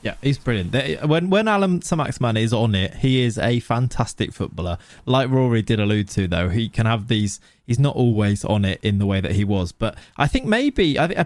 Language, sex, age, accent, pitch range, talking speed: English, male, 20-39, British, 105-140 Hz, 220 wpm